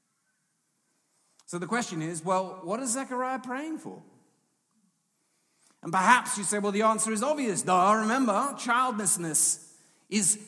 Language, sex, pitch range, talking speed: English, male, 155-230 Hz, 130 wpm